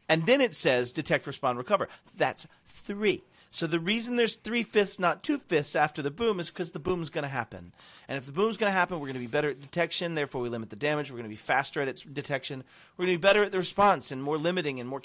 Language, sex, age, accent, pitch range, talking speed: English, male, 40-59, American, 125-170 Hz, 270 wpm